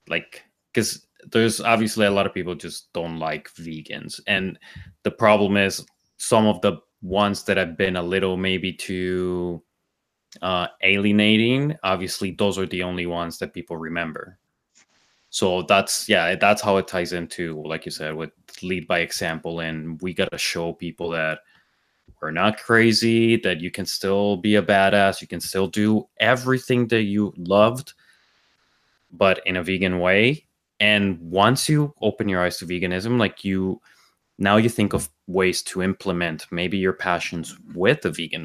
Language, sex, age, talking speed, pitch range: English, male, 20-39, 165 wpm, 85-105 Hz